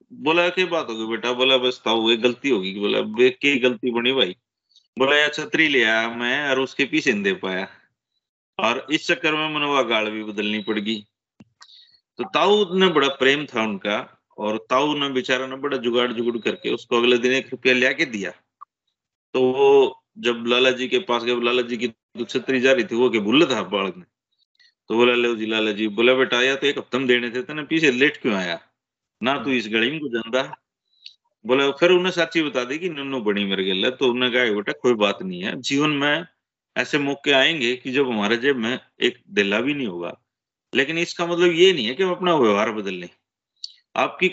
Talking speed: 200 wpm